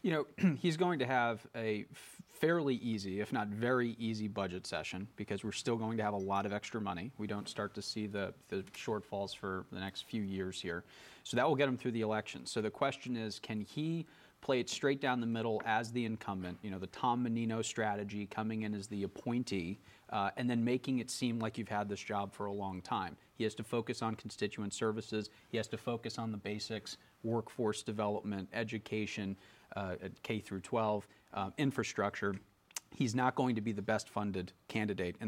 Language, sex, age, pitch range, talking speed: English, male, 30-49, 100-120 Hz, 210 wpm